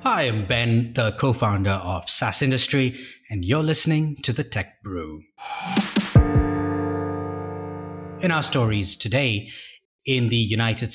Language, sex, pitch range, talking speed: English, male, 110-135 Hz, 120 wpm